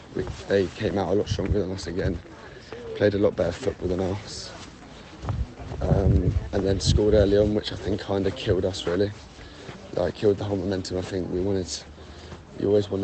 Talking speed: 190 wpm